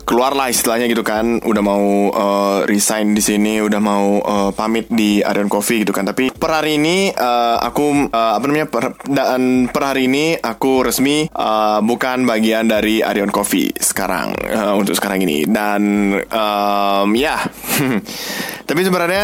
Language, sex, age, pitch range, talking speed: Indonesian, male, 20-39, 105-135 Hz, 165 wpm